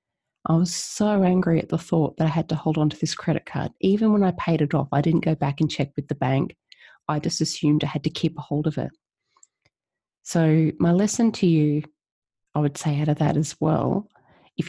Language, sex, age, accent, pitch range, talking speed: English, female, 30-49, Australian, 150-175 Hz, 235 wpm